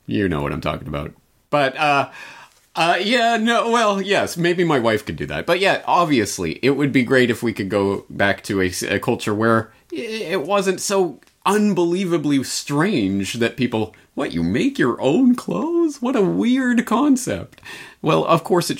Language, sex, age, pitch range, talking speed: English, male, 30-49, 100-145 Hz, 180 wpm